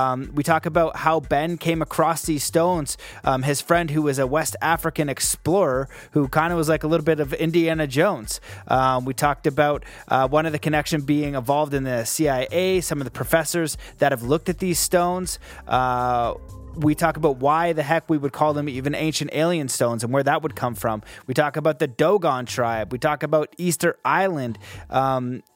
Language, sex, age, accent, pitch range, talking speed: English, male, 30-49, American, 135-165 Hz, 205 wpm